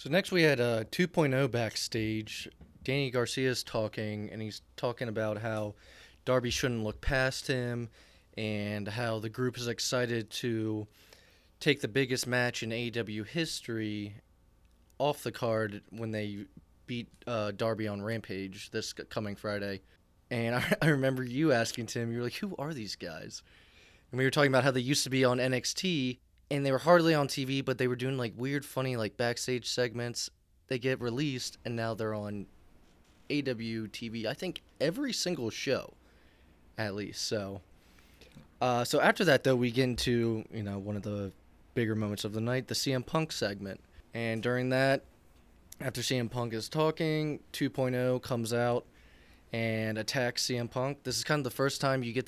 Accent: American